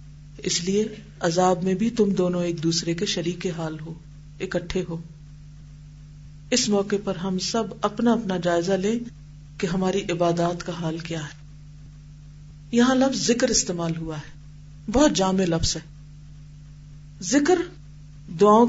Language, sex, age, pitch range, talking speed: Urdu, female, 40-59, 150-220 Hz, 140 wpm